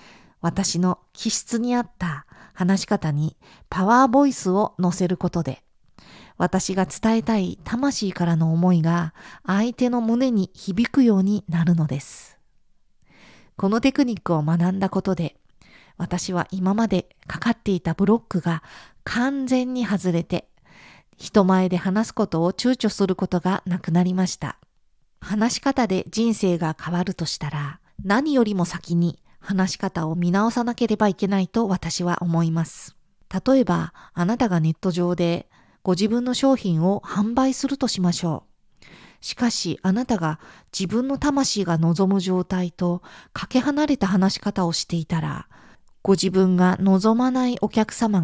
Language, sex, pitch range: Japanese, female, 175-225 Hz